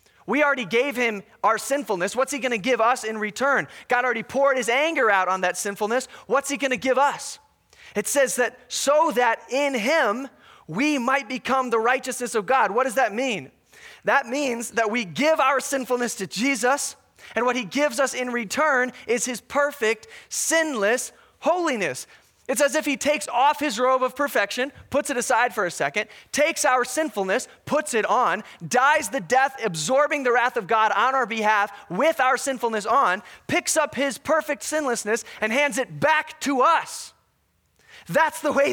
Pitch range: 230-285 Hz